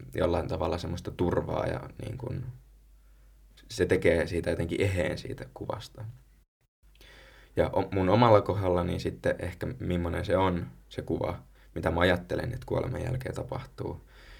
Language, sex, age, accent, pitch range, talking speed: Finnish, male, 20-39, native, 75-115 Hz, 140 wpm